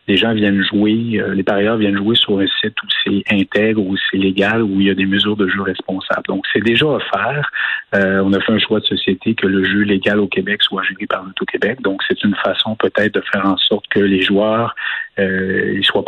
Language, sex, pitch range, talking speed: French, male, 95-110 Hz, 245 wpm